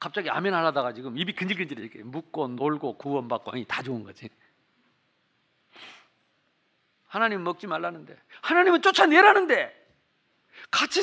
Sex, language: male, Korean